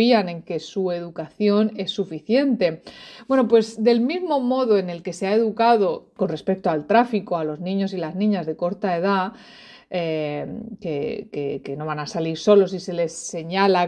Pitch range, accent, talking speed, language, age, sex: 175-220 Hz, Spanish, 180 wpm, Spanish, 30-49, female